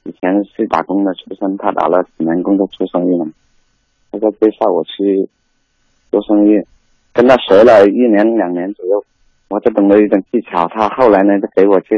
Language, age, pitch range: Chinese, 30-49, 95-110 Hz